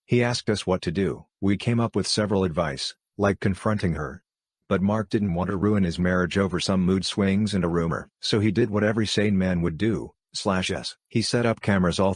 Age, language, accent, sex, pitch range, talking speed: 50-69, English, American, male, 95-110 Hz, 225 wpm